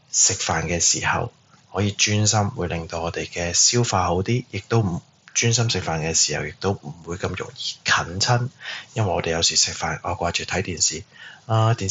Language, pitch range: Chinese, 90-110 Hz